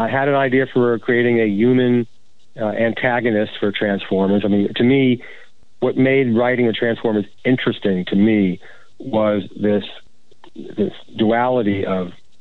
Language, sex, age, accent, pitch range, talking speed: English, male, 40-59, American, 100-115 Hz, 140 wpm